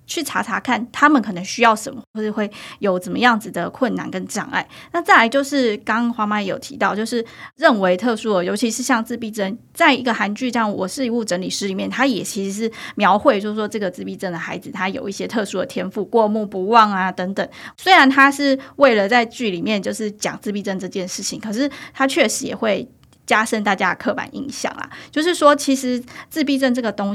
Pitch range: 200-255 Hz